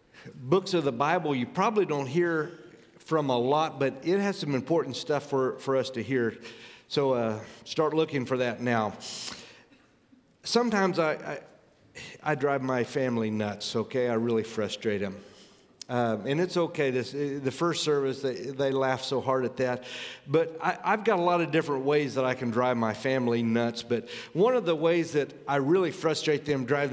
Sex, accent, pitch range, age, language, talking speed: male, American, 130-160 Hz, 50-69, English, 185 wpm